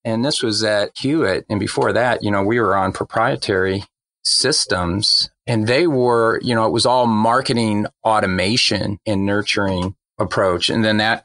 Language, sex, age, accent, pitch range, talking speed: English, male, 40-59, American, 110-135 Hz, 165 wpm